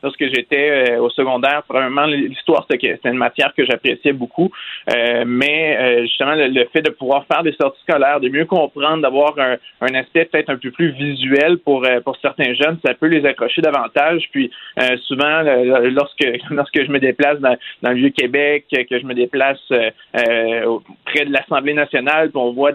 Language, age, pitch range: French, 30-49, 125-145 Hz